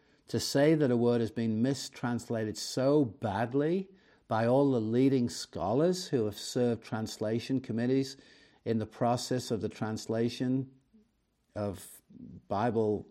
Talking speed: 130 wpm